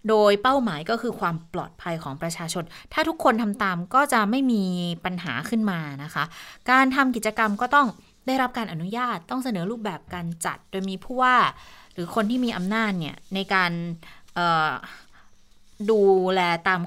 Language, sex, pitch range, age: Thai, female, 185-245 Hz, 30-49